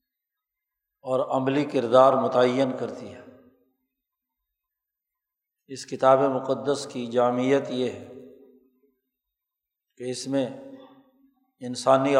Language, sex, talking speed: Urdu, male, 85 wpm